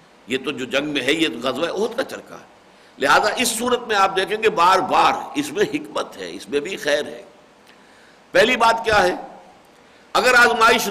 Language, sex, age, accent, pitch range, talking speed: English, male, 60-79, Indian, 180-245 Hz, 200 wpm